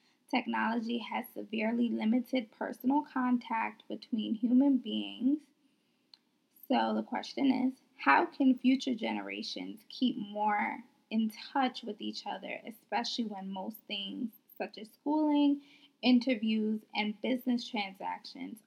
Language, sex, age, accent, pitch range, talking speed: English, female, 10-29, American, 210-275 Hz, 115 wpm